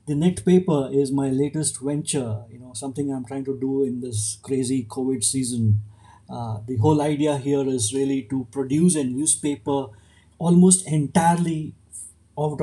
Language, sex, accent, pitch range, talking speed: English, male, Indian, 120-145 Hz, 155 wpm